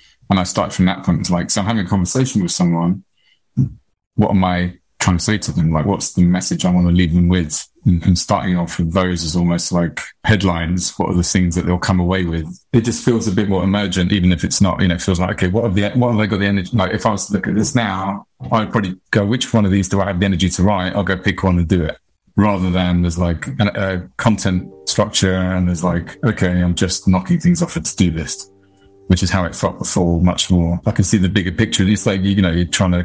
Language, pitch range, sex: English, 90-105 Hz, male